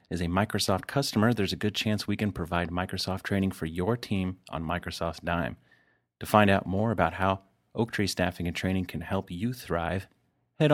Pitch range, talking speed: 90-110 Hz, 195 wpm